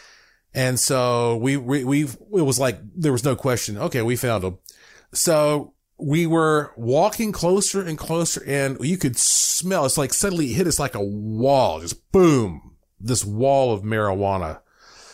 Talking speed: 165 wpm